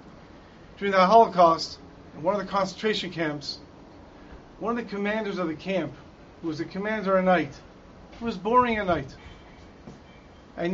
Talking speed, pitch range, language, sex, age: 150 wpm, 170-210 Hz, English, male, 40-59